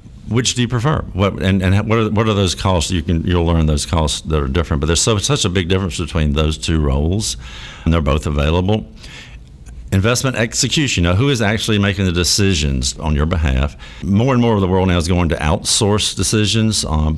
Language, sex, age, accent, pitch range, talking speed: English, male, 60-79, American, 80-100 Hz, 200 wpm